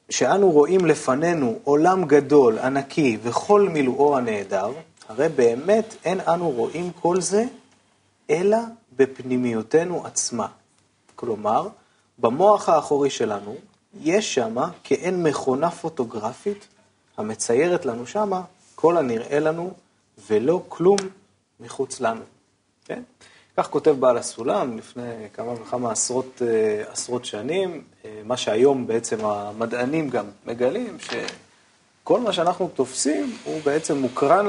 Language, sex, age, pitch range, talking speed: Hebrew, male, 30-49, 125-185 Hz, 110 wpm